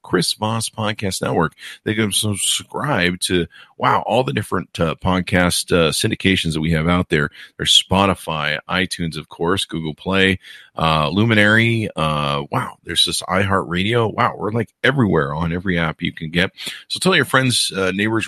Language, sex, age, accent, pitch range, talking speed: English, male, 40-59, American, 85-105 Hz, 165 wpm